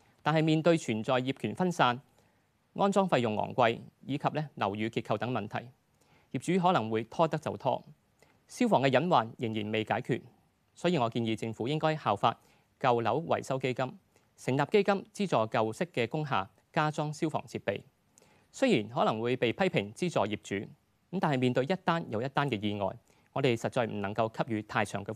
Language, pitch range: Chinese, 110-160 Hz